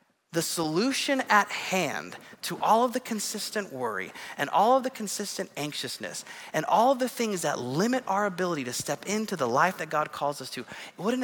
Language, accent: English, American